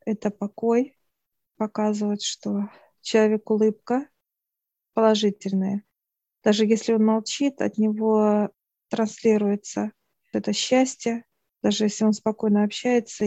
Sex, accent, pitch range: female, native, 205-220 Hz